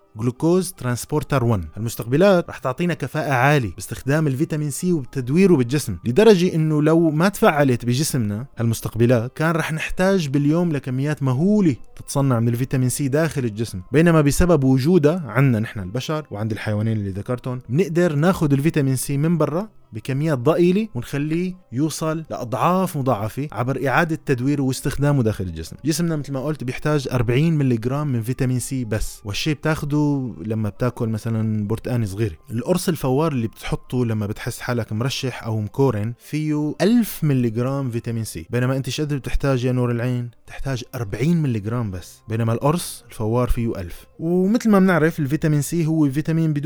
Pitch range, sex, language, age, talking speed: 120-155 Hz, male, Arabic, 20-39, 155 wpm